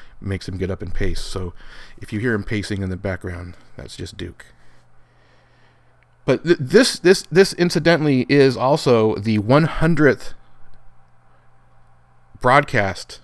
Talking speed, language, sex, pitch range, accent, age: 130 wpm, English, male, 95-150 Hz, American, 30-49